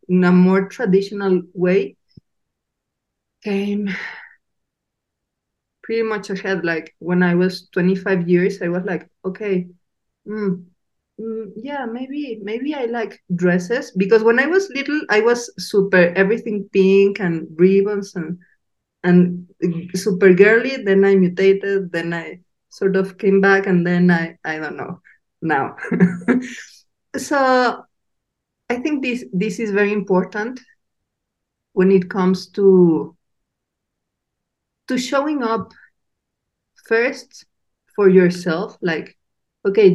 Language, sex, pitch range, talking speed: English, female, 180-220 Hz, 120 wpm